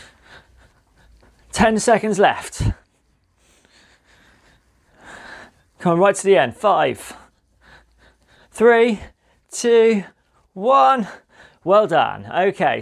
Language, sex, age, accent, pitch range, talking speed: English, male, 30-49, British, 140-185 Hz, 75 wpm